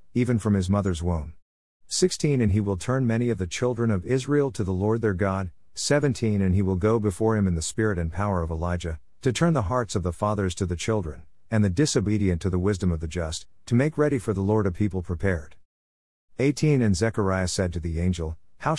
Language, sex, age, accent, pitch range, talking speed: English, male, 50-69, American, 90-120 Hz, 225 wpm